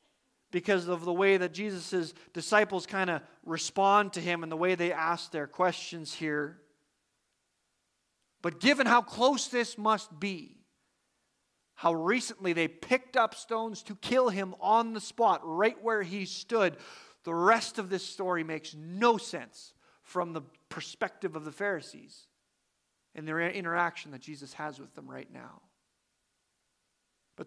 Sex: male